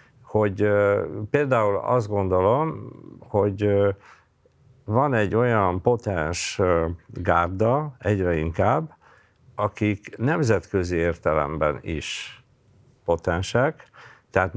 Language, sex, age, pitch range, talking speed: Hungarian, male, 50-69, 85-120 Hz, 85 wpm